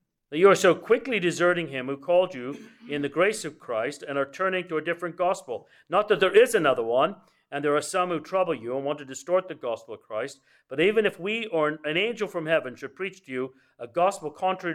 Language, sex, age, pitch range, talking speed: English, male, 50-69, 135-180 Hz, 240 wpm